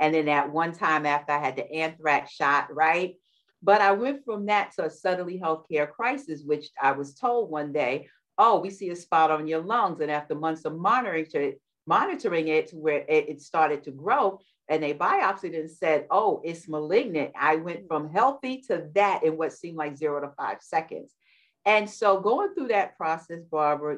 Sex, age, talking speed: female, 50-69, 190 wpm